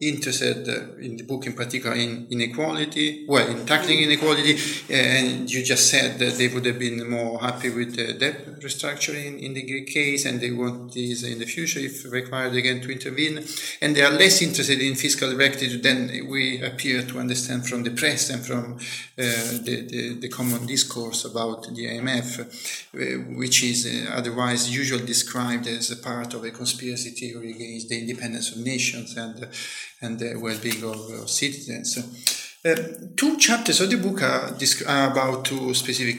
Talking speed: 175 wpm